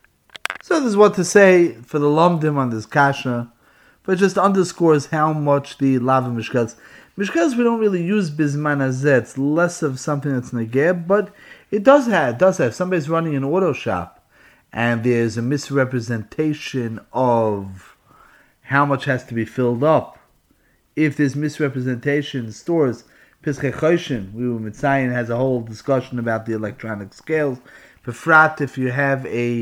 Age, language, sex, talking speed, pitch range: 30-49, English, male, 155 wpm, 120-160 Hz